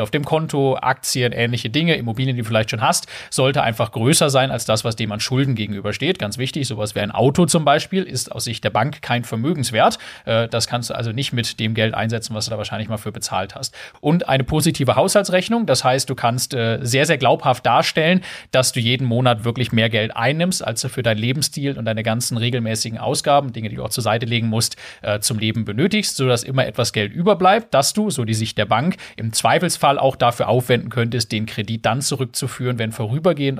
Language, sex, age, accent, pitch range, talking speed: German, male, 30-49, German, 115-145 Hz, 215 wpm